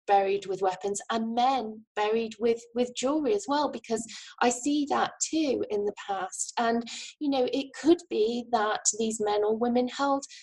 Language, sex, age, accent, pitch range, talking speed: English, female, 20-39, British, 200-275 Hz, 180 wpm